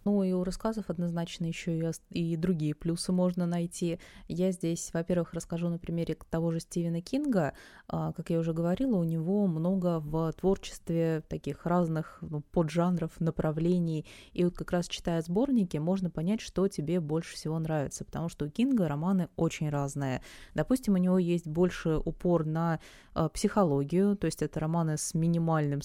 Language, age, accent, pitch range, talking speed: Russian, 20-39, native, 150-180 Hz, 160 wpm